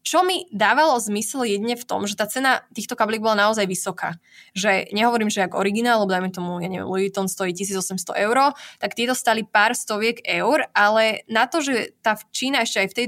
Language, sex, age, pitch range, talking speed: Slovak, female, 20-39, 195-225 Hz, 205 wpm